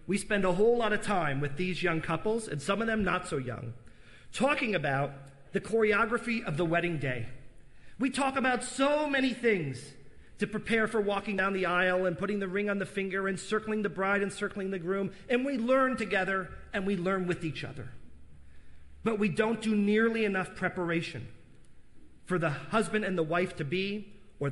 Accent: American